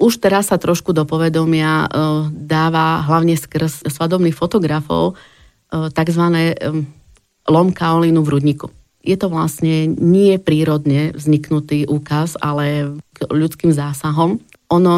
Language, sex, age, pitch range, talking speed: Slovak, female, 30-49, 155-175 Hz, 110 wpm